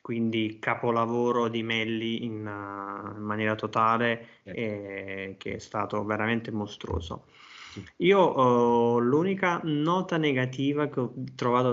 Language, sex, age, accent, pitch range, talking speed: Italian, male, 20-39, native, 115-130 Hz, 120 wpm